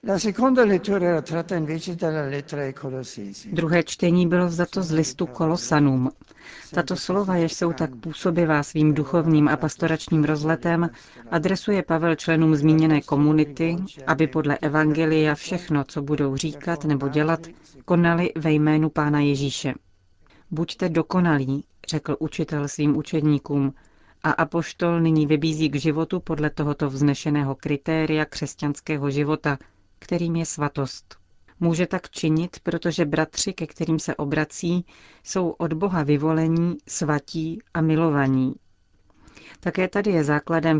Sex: female